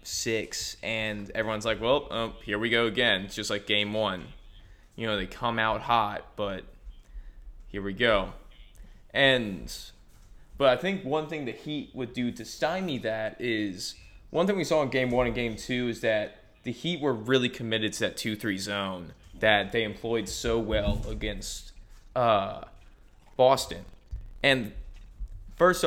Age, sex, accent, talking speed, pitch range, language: 20-39, male, American, 165 wpm, 100-120 Hz, English